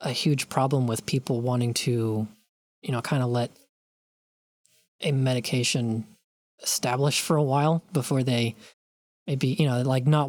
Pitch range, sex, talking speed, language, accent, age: 115-145 Hz, male, 145 wpm, English, American, 20-39